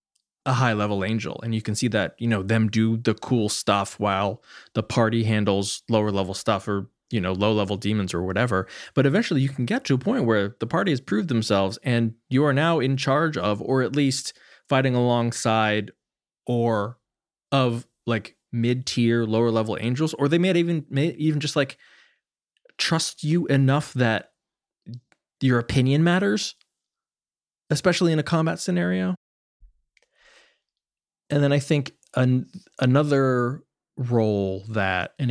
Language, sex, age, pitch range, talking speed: English, male, 20-39, 105-135 Hz, 160 wpm